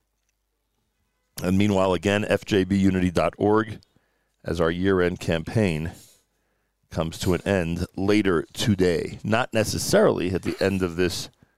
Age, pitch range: 50-69, 80-105 Hz